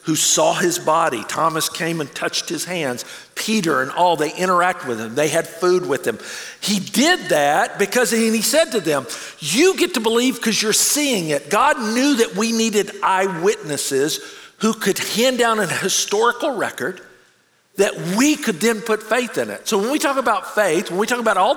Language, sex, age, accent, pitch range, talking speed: English, male, 50-69, American, 190-255 Hz, 200 wpm